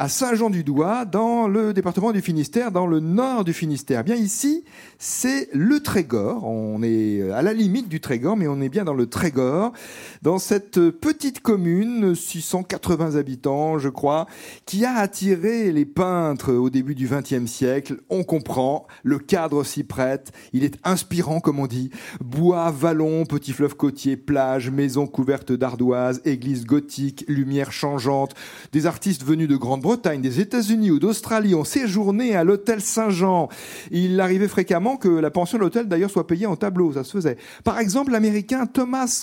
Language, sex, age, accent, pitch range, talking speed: French, male, 40-59, French, 135-200 Hz, 170 wpm